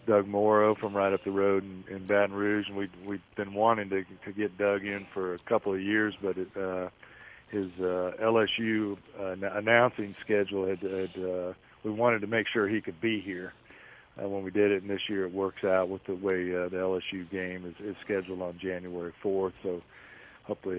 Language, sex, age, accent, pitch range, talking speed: English, male, 40-59, American, 95-105 Hz, 210 wpm